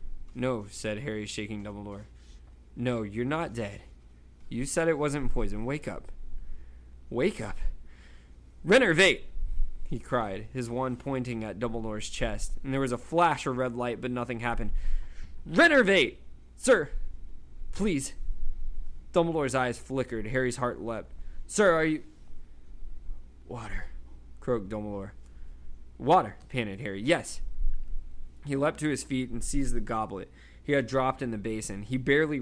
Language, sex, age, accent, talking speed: English, male, 20-39, American, 135 wpm